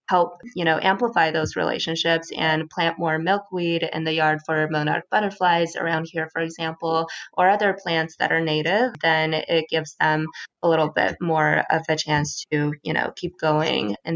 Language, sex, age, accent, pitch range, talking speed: English, female, 20-39, American, 160-185 Hz, 180 wpm